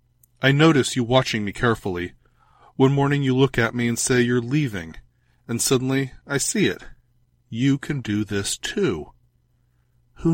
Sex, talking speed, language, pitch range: male, 155 wpm, English, 105-125 Hz